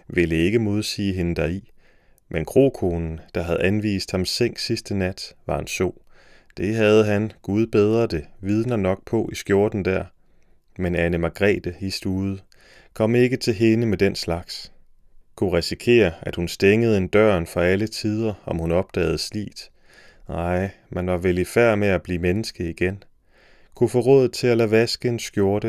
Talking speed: 175 wpm